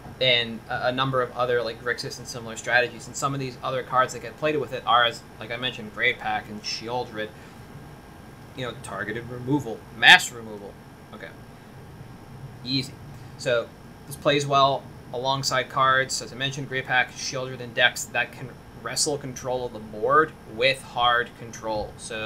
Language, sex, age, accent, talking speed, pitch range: English, male, 20-39, American, 170 wpm, 115-135 Hz